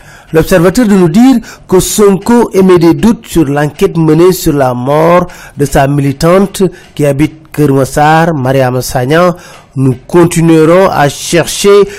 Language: French